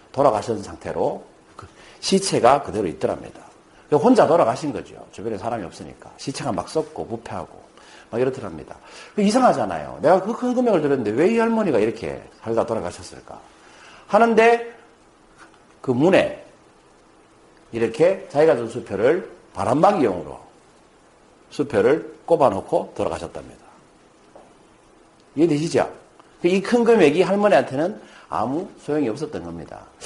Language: Korean